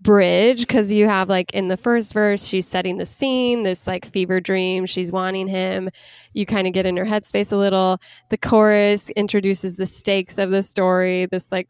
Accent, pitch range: American, 190-225 Hz